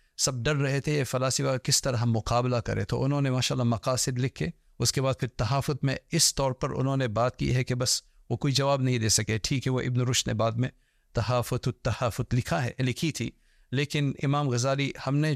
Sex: male